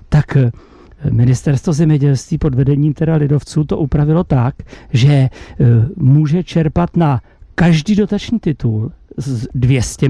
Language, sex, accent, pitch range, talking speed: Czech, male, native, 135-180 Hz, 105 wpm